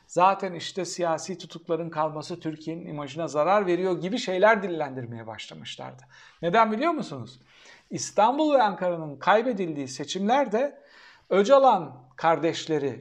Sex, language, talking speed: male, Turkish, 105 wpm